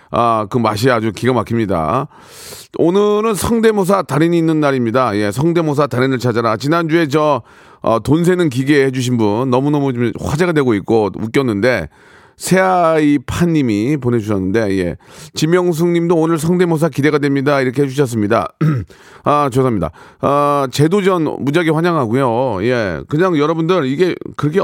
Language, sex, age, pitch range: Korean, male, 40-59, 120-175 Hz